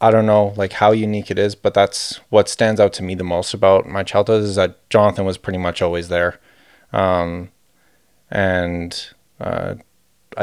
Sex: male